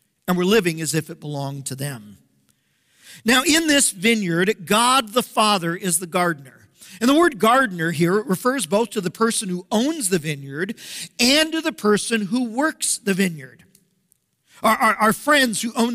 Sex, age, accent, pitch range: male, 50-69, American, 170-235 Hz